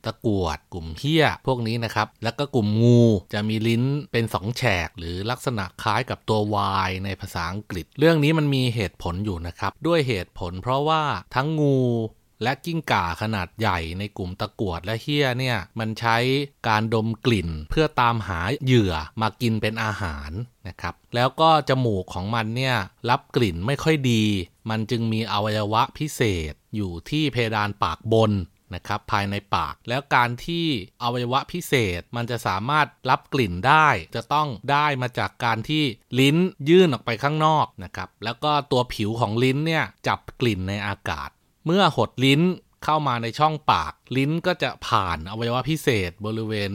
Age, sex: 30-49, male